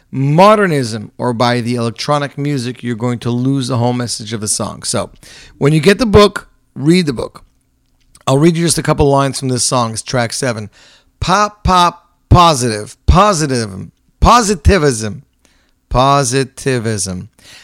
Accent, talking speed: American, 150 wpm